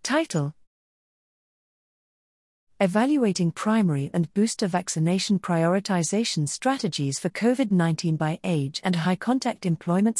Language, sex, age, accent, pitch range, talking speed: English, female, 40-59, British, 160-205 Hz, 95 wpm